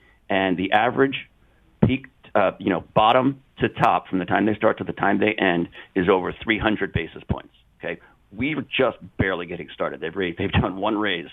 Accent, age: American, 50-69